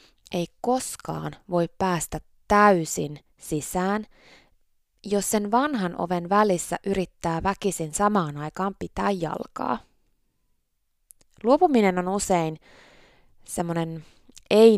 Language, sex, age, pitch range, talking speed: Finnish, female, 20-39, 160-205 Hz, 90 wpm